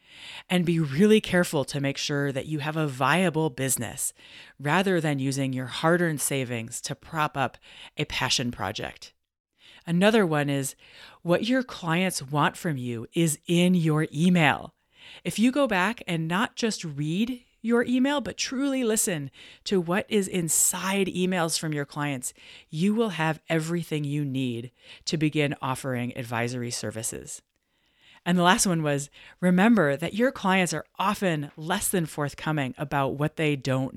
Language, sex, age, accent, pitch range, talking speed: English, female, 30-49, American, 140-185 Hz, 155 wpm